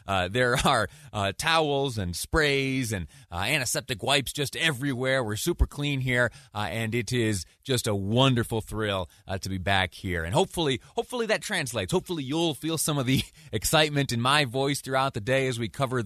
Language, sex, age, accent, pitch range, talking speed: English, male, 30-49, American, 100-140 Hz, 190 wpm